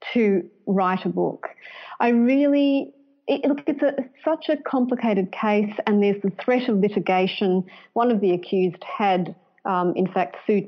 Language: English